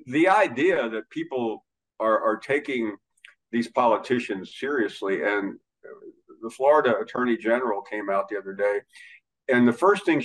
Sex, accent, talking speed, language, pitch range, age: male, American, 140 wpm, English, 115-155 Hz, 50-69